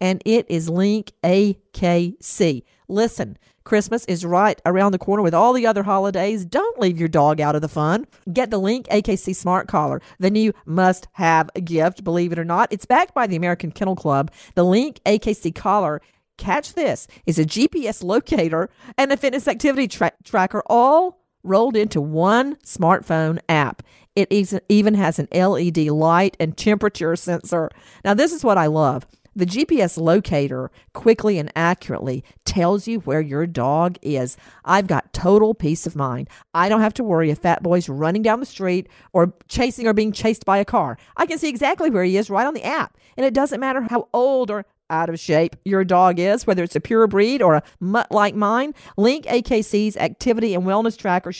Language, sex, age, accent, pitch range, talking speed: English, female, 50-69, American, 170-225 Hz, 190 wpm